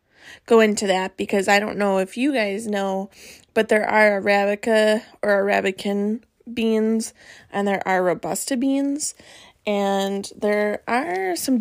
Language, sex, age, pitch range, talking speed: English, female, 20-39, 200-235 Hz, 140 wpm